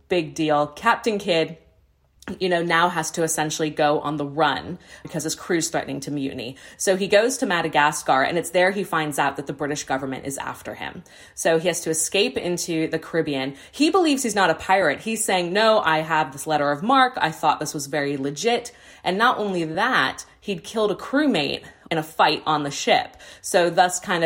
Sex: female